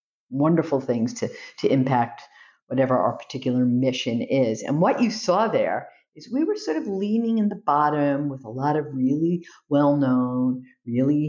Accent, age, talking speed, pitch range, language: American, 50-69, 165 wpm, 135-185 Hz, English